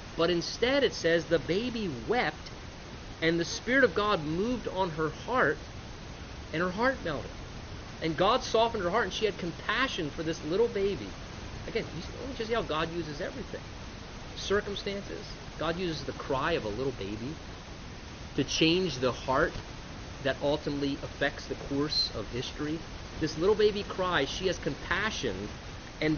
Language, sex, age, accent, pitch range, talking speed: English, male, 30-49, American, 125-185 Hz, 160 wpm